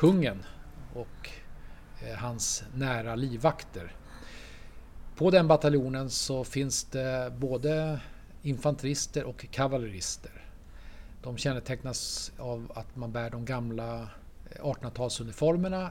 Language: Swedish